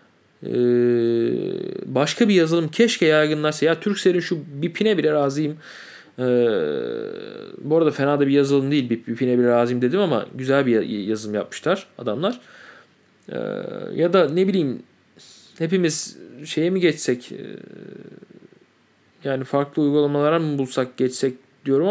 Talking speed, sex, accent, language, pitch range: 125 wpm, male, native, Turkish, 125-180 Hz